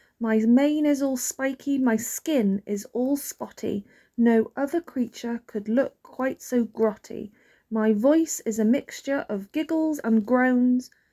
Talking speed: 145 wpm